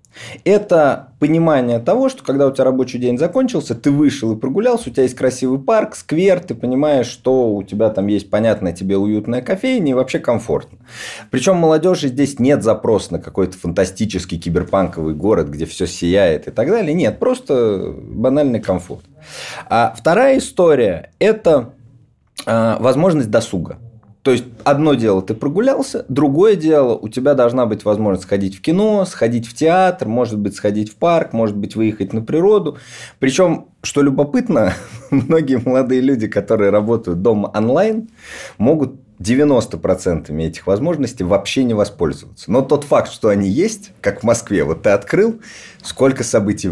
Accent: native